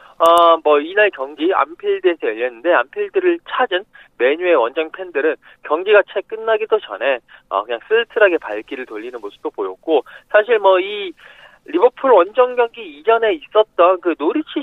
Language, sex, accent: Korean, male, native